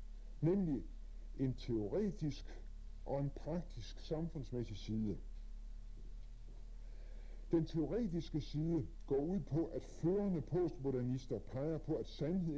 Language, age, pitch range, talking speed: Danish, 50-69, 105-155 Hz, 100 wpm